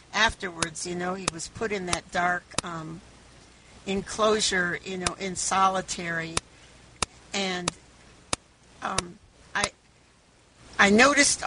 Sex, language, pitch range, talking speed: female, English, 170-210 Hz, 105 wpm